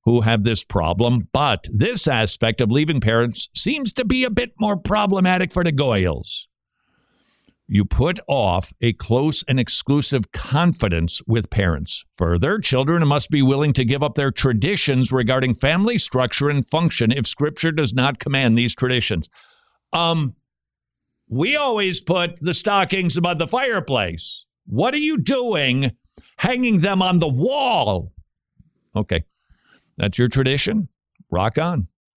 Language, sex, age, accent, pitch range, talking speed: English, male, 50-69, American, 110-155 Hz, 140 wpm